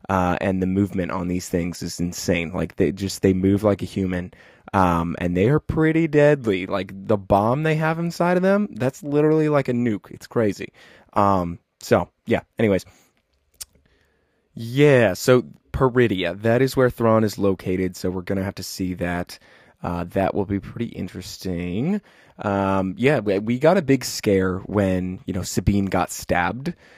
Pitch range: 90-115 Hz